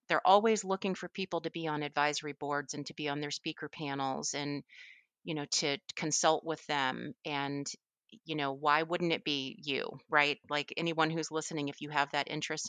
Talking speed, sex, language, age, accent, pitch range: 200 wpm, female, English, 30-49, American, 145-165 Hz